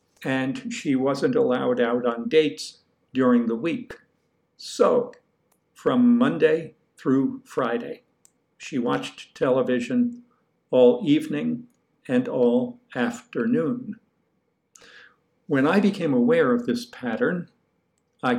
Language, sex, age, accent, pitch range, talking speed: English, male, 50-69, American, 145-245 Hz, 100 wpm